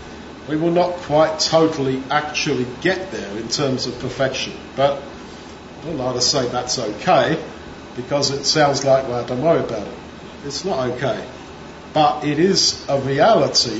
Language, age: English, 50-69